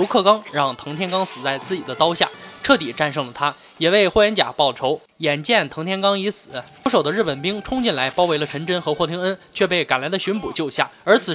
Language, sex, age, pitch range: Chinese, male, 20-39, 150-215 Hz